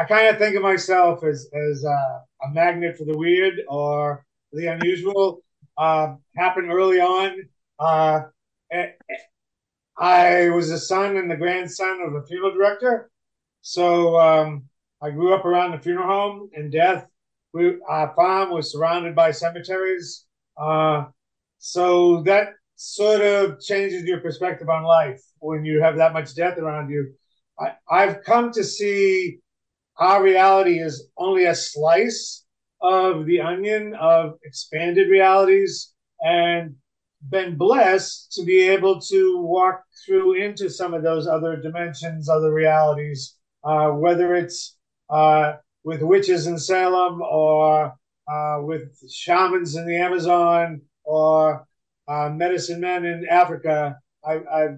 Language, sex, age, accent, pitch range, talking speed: English, male, 40-59, American, 155-190 Hz, 135 wpm